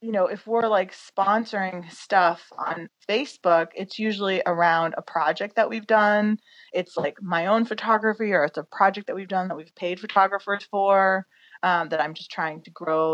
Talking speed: 185 wpm